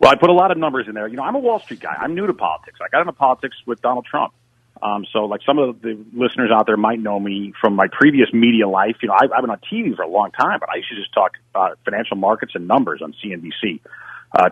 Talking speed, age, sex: 285 wpm, 40-59, male